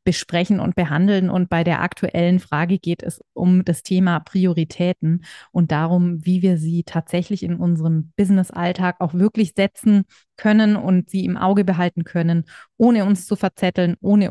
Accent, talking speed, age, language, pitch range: German, 160 wpm, 30-49, German, 165-195 Hz